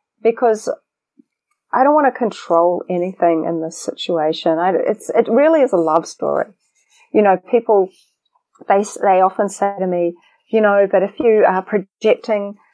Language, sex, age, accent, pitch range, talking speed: English, female, 30-49, Australian, 175-215 Hz, 160 wpm